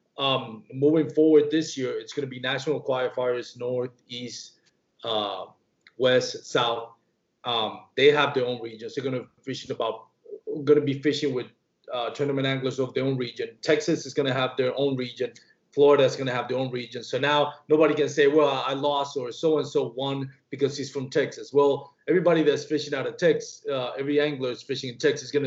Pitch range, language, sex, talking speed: 130-170 Hz, English, male, 200 wpm